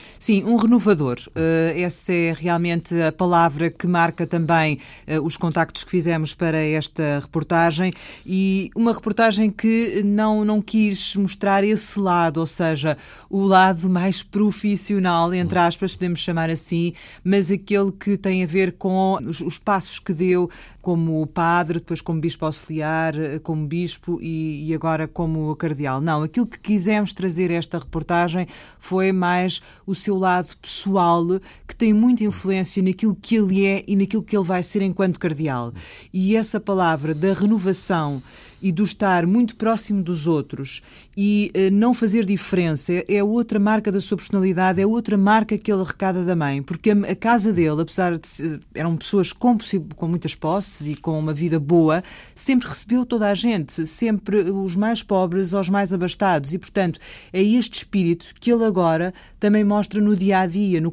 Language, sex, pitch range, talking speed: Portuguese, female, 170-205 Hz, 165 wpm